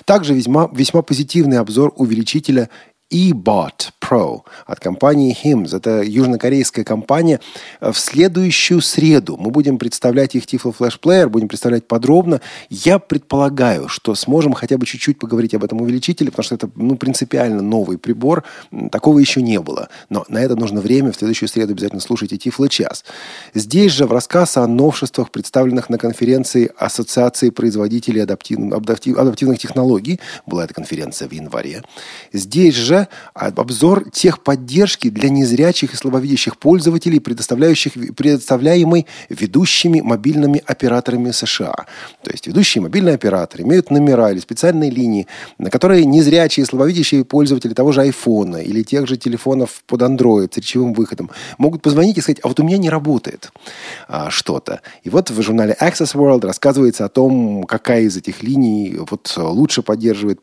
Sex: male